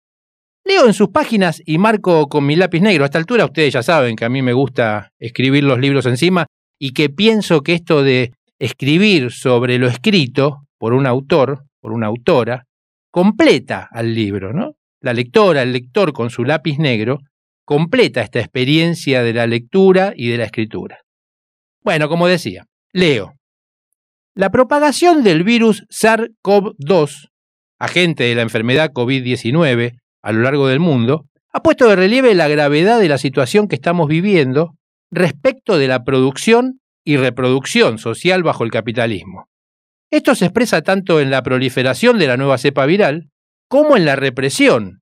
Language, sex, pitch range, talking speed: Spanish, male, 125-185 Hz, 160 wpm